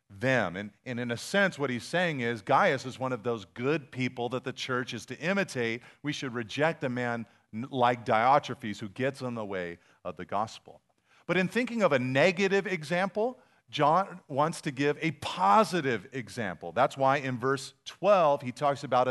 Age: 40-59